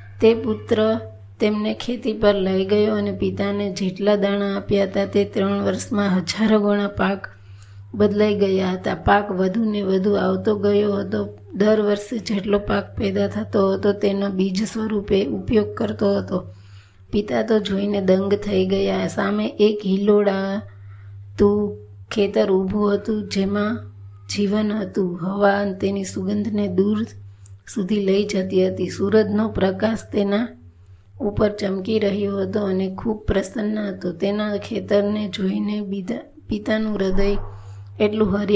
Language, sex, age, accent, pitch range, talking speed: Gujarati, female, 20-39, native, 185-210 Hz, 75 wpm